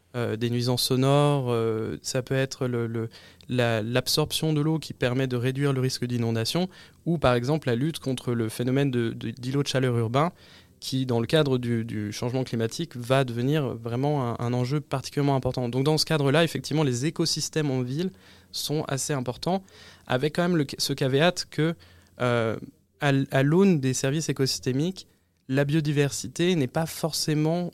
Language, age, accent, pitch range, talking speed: French, 20-39, French, 120-155 Hz, 175 wpm